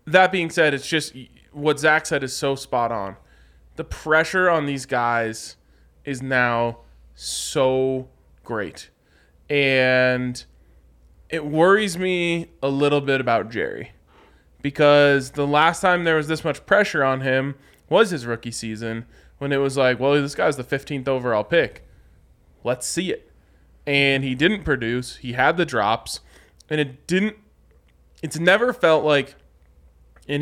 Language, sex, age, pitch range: English, male, 20-39, 115-145 Hz